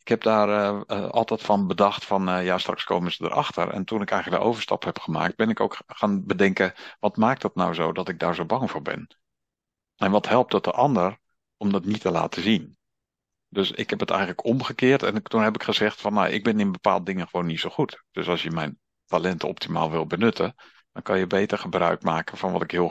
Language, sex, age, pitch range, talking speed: Dutch, male, 50-69, 85-100 Hz, 240 wpm